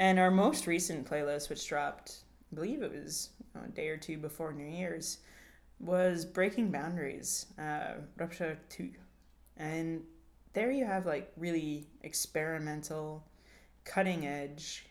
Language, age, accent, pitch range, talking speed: English, 20-39, American, 140-165 Hz, 140 wpm